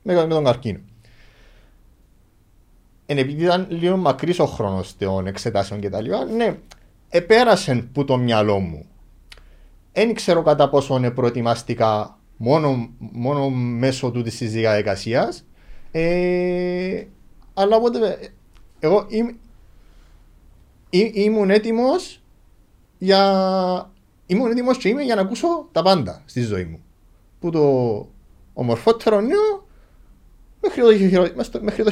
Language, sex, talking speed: Greek, male, 115 wpm